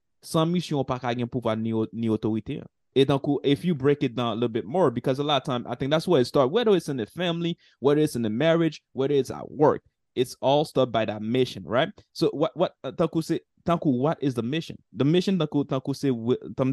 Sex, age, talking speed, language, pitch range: male, 20-39, 225 wpm, English, 120-145 Hz